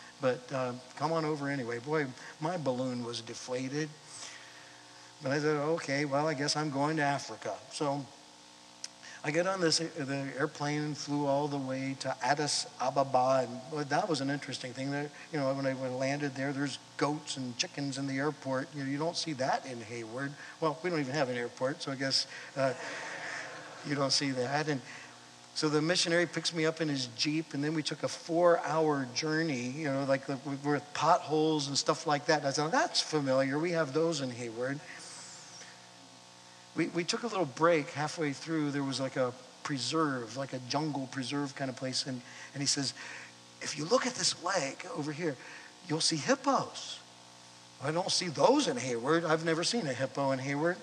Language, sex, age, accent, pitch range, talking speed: English, male, 60-79, American, 130-155 Hz, 195 wpm